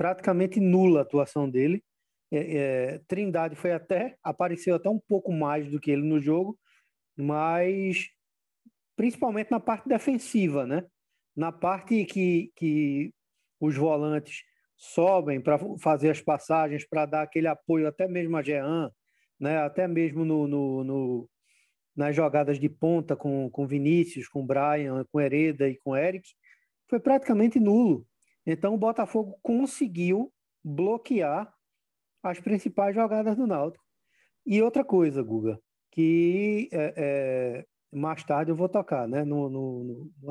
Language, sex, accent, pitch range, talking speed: Portuguese, male, Brazilian, 145-200 Hz, 140 wpm